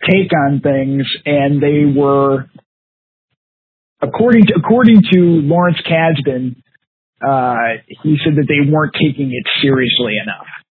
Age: 40-59